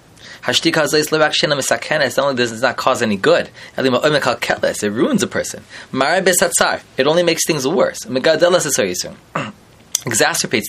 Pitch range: 130-180 Hz